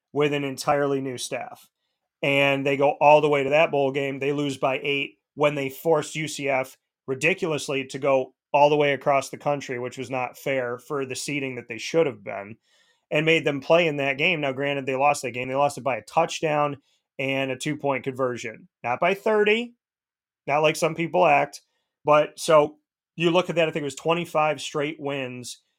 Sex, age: male, 30-49